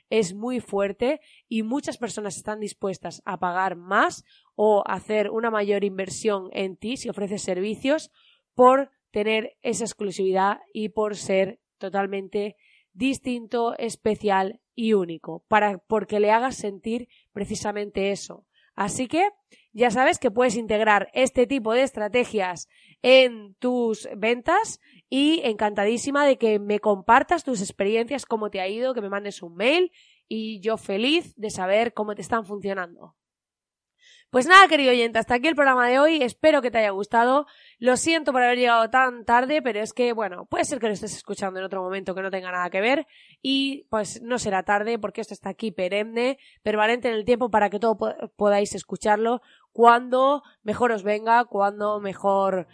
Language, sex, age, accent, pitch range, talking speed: Spanish, female, 20-39, Spanish, 200-250 Hz, 165 wpm